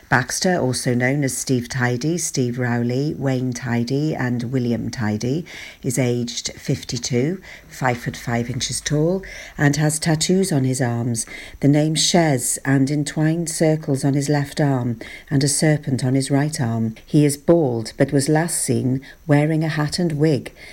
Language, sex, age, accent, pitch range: Japanese, female, 50-69, British, 130-155 Hz